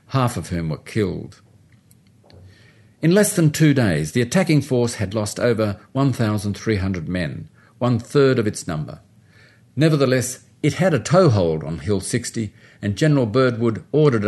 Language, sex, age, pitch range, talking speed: English, male, 50-69, 105-135 Hz, 160 wpm